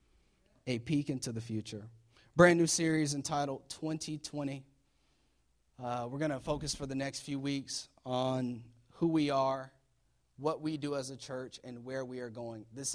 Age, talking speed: 30-49, 165 wpm